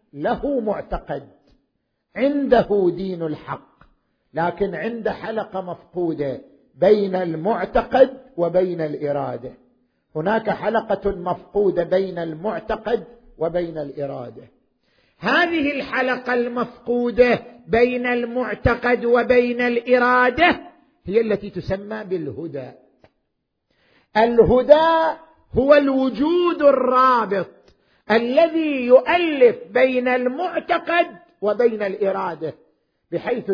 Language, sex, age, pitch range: Arabic, male, 50-69, 195-260 Hz